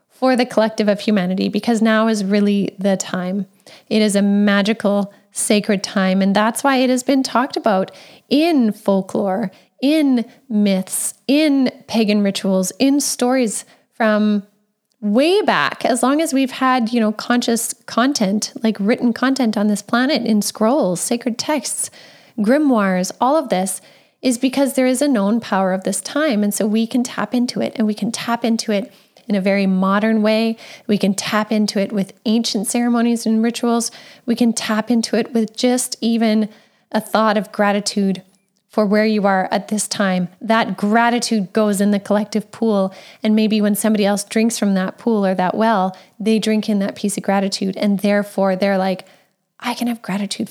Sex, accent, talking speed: female, American, 180 wpm